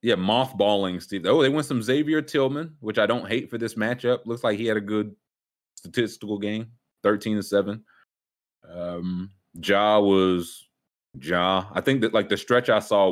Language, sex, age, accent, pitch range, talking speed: English, male, 30-49, American, 80-105 Hz, 170 wpm